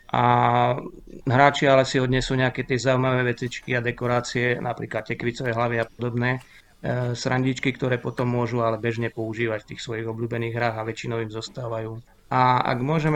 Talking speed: 160 wpm